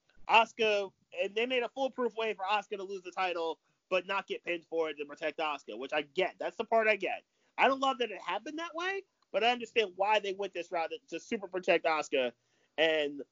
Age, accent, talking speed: 30-49, American, 230 wpm